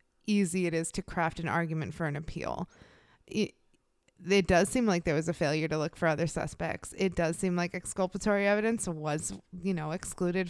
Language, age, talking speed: English, 20-39, 195 wpm